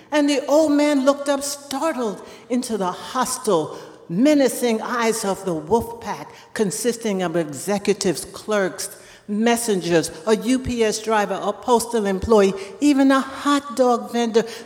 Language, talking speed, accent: English, 130 wpm, American